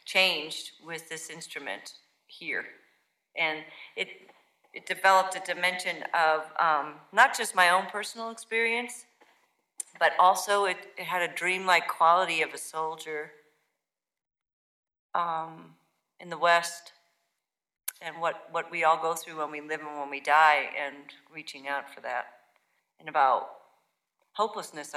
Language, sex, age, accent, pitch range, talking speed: English, female, 40-59, American, 150-180 Hz, 135 wpm